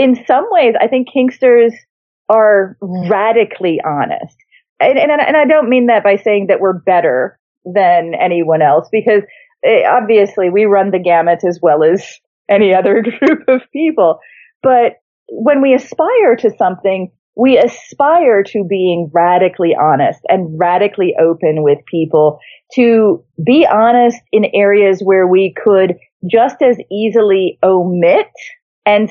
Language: English